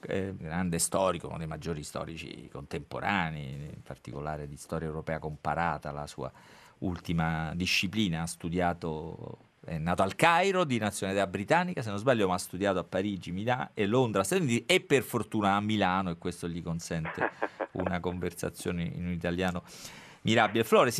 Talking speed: 165 wpm